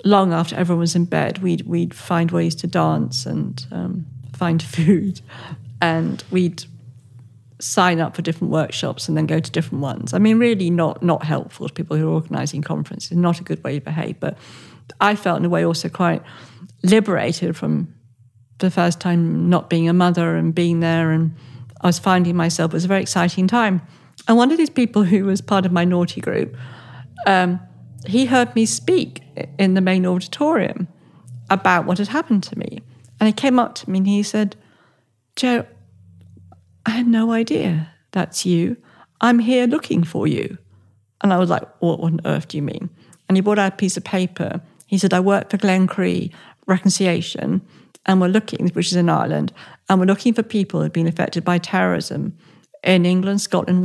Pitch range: 160-195 Hz